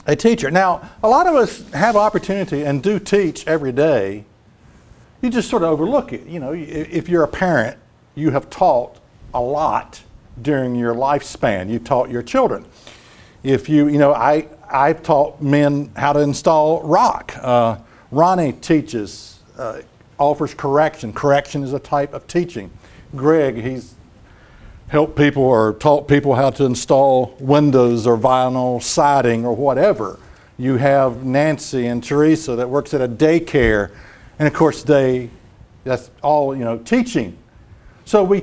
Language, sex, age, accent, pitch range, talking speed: English, male, 60-79, American, 125-165 Hz, 155 wpm